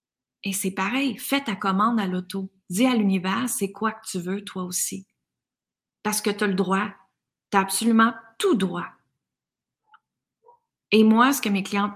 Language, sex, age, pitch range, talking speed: French, female, 30-49, 195-240 Hz, 175 wpm